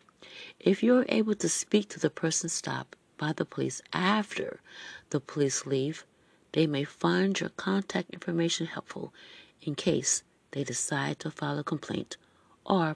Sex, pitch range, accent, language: female, 155-205 Hz, American, English